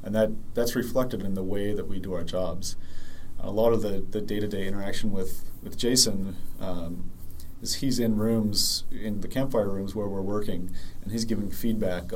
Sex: male